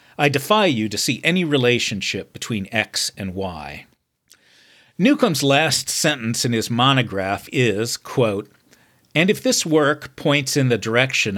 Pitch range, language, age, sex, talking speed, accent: 105-140 Hz, English, 50-69, male, 140 wpm, American